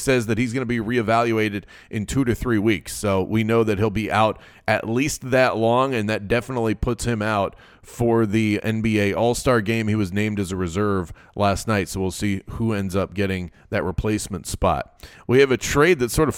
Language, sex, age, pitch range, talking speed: English, male, 30-49, 105-125 Hz, 215 wpm